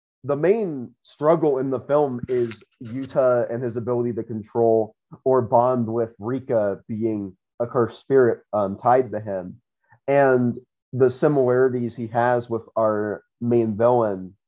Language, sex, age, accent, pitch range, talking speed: English, male, 20-39, American, 100-125 Hz, 140 wpm